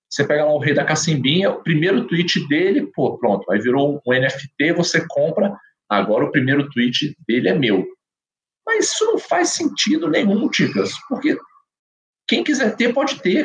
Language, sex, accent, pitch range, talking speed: Portuguese, male, Brazilian, 140-220 Hz, 180 wpm